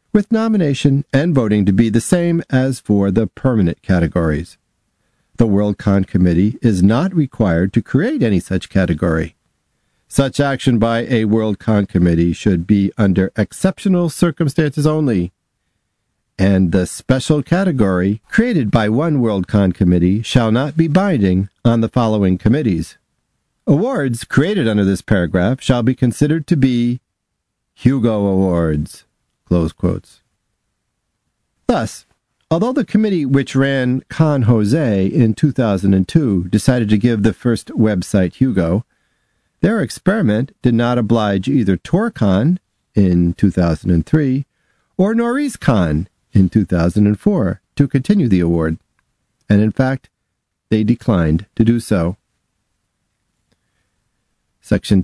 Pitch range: 95-135 Hz